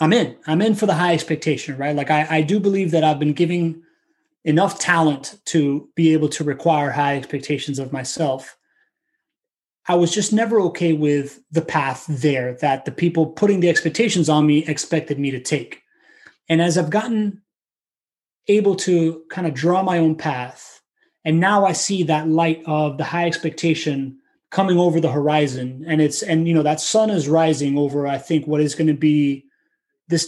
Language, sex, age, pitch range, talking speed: English, male, 20-39, 155-195 Hz, 185 wpm